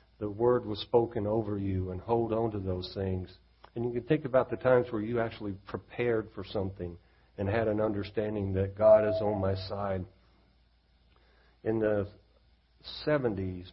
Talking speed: 165 wpm